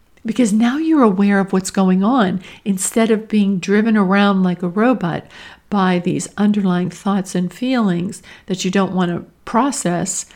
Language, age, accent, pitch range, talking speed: English, 50-69, American, 190-230 Hz, 160 wpm